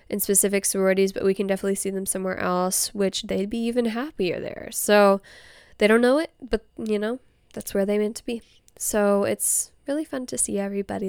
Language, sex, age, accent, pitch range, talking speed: English, female, 10-29, American, 195-245 Hz, 205 wpm